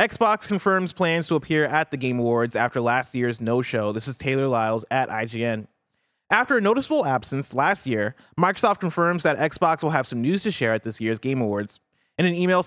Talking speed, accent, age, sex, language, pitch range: 205 wpm, American, 30-49, male, English, 120-170 Hz